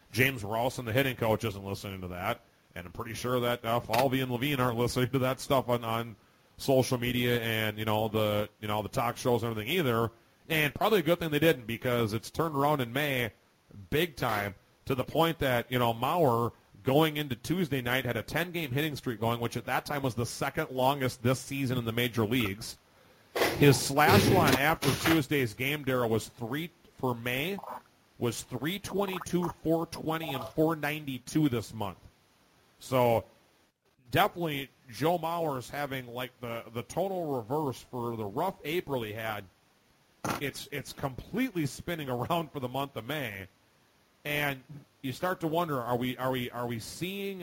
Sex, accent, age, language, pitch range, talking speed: male, American, 40-59, English, 120-150 Hz, 180 wpm